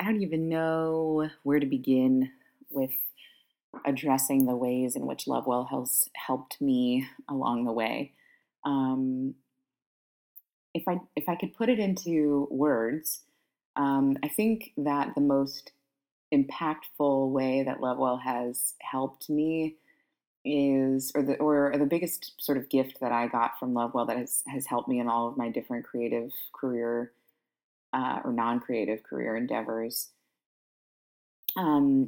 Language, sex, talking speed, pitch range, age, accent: English, female, 140 wpm, 130-155 Hz, 20-39, American